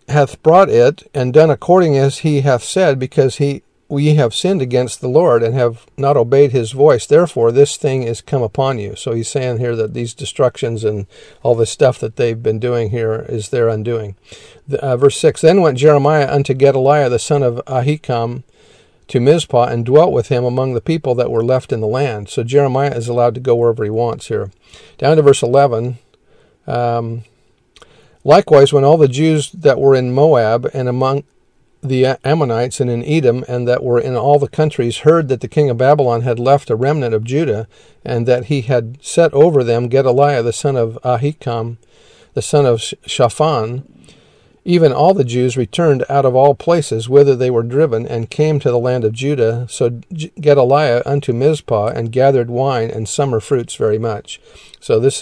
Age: 50-69